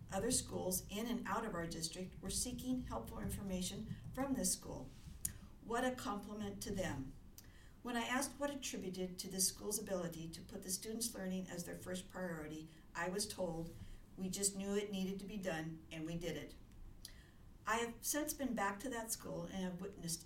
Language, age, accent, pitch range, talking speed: English, 60-79, American, 180-215 Hz, 190 wpm